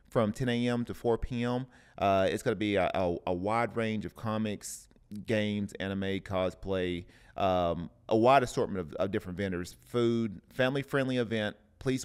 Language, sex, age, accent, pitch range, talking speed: English, male, 30-49, American, 100-120 Hz, 150 wpm